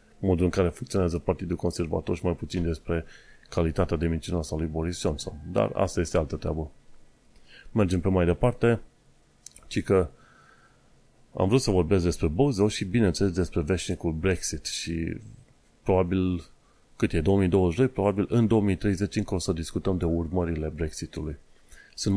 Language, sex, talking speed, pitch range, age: Romanian, male, 145 wpm, 85-105 Hz, 30-49